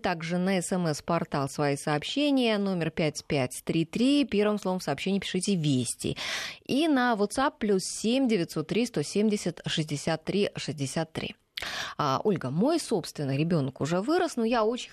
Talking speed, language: 145 wpm, Russian